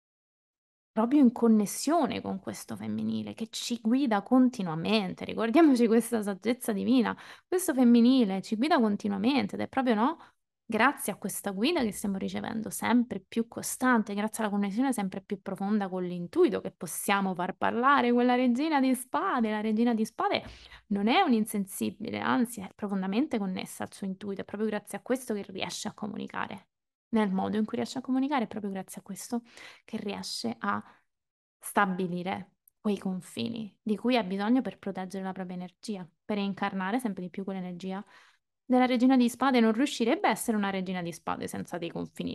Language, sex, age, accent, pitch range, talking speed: Italian, female, 20-39, native, 195-240 Hz, 170 wpm